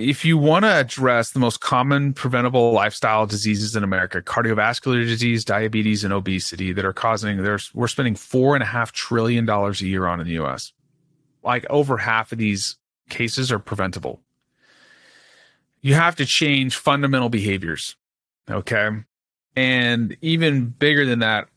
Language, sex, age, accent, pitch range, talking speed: English, male, 30-49, American, 110-140 Hz, 140 wpm